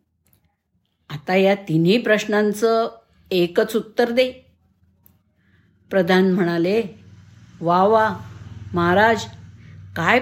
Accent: native